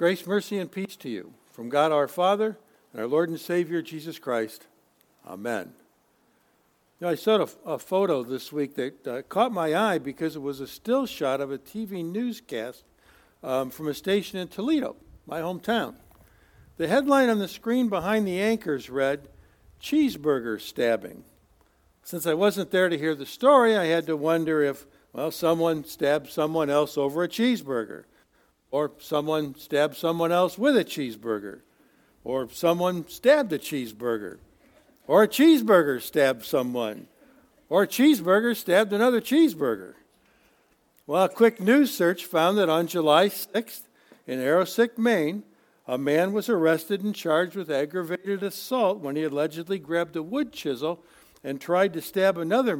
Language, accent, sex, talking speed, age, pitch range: English, American, male, 155 wpm, 60-79, 145-200 Hz